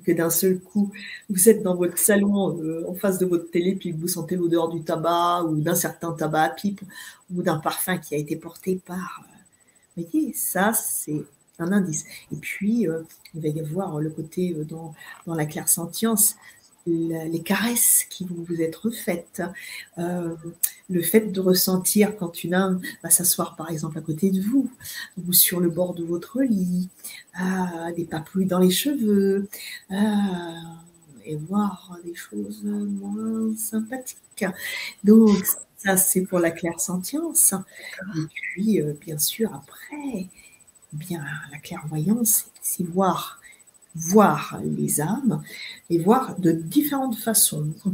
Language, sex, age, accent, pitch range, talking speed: French, female, 40-59, French, 170-205 Hz, 160 wpm